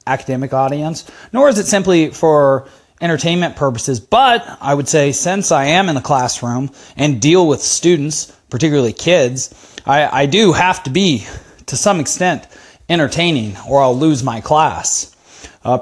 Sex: male